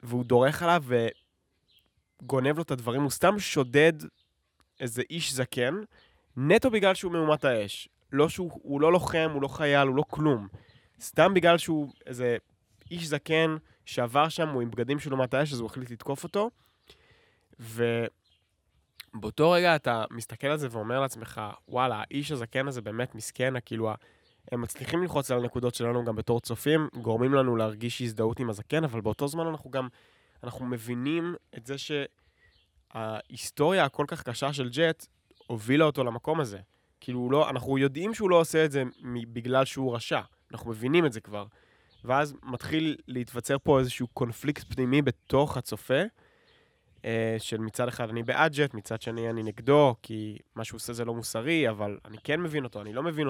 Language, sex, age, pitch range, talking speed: Hebrew, male, 20-39, 115-150 Hz, 165 wpm